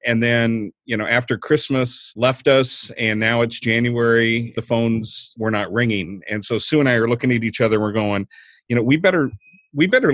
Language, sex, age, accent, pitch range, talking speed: English, male, 40-59, American, 110-135 Hz, 205 wpm